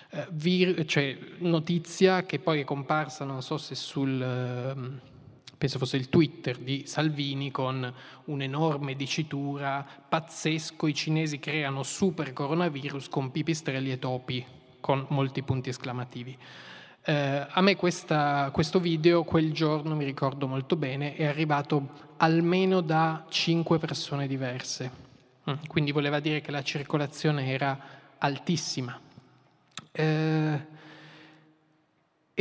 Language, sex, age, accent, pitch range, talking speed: Italian, male, 20-39, native, 135-160 Hz, 115 wpm